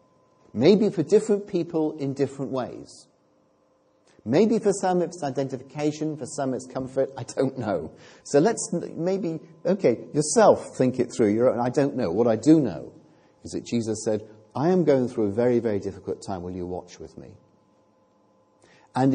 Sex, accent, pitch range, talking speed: male, British, 110-150 Hz, 165 wpm